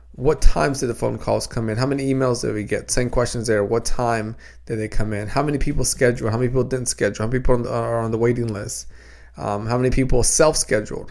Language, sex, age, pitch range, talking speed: English, male, 20-39, 110-140 Hz, 245 wpm